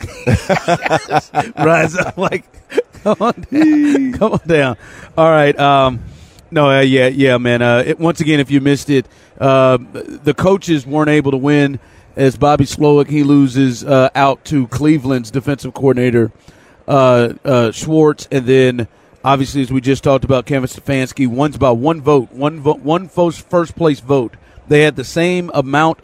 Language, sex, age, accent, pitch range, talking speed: English, male, 40-59, American, 130-155 Hz, 170 wpm